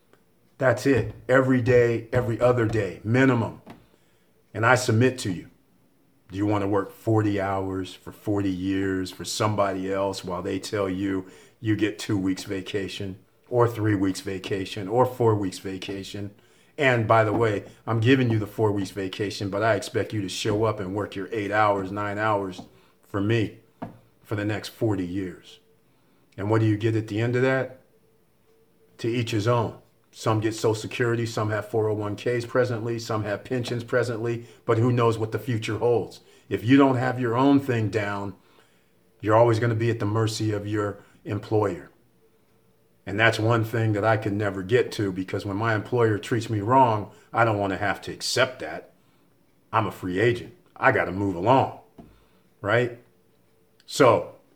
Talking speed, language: 180 wpm, English